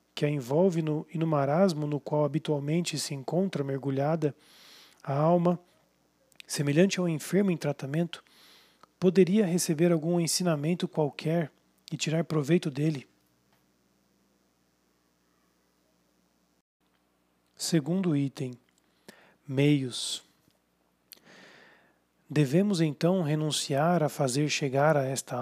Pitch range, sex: 125-165 Hz, male